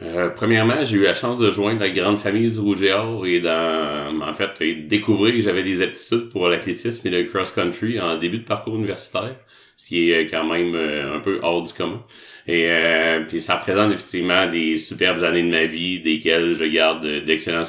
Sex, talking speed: male, 205 wpm